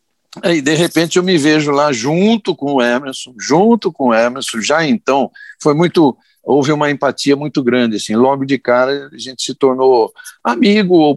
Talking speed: 165 wpm